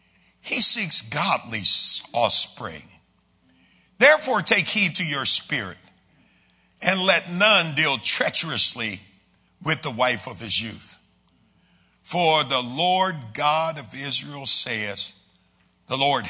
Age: 50-69